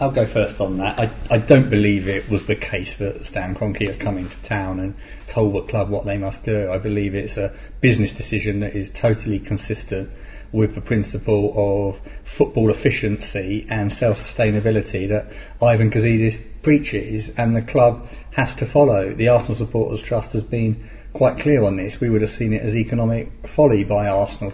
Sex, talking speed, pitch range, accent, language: male, 185 wpm, 105-120 Hz, British, English